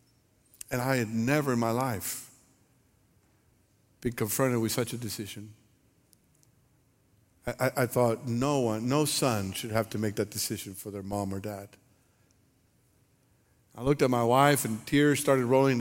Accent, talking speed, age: American, 155 wpm, 60-79